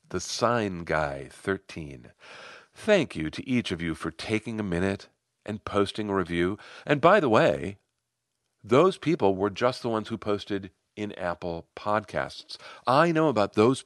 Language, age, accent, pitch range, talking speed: English, 50-69, American, 90-125 Hz, 160 wpm